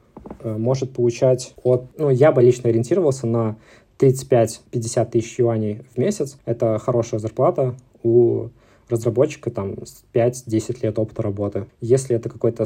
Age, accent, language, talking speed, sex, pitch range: 20-39, native, Russian, 130 wpm, male, 115-130 Hz